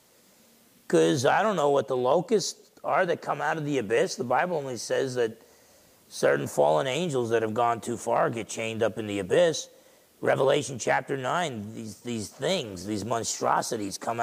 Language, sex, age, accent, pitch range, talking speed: English, male, 40-59, American, 115-185 Hz, 175 wpm